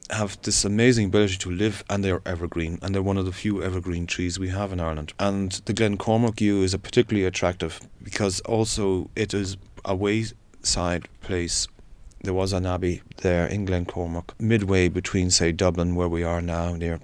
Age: 30-49